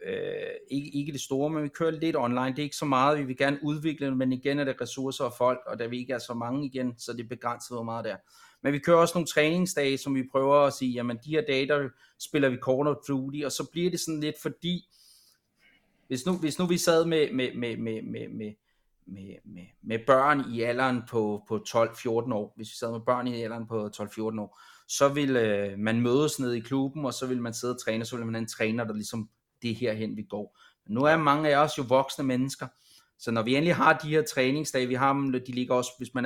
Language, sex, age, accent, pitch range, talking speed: English, male, 30-49, Danish, 120-150 Hz, 250 wpm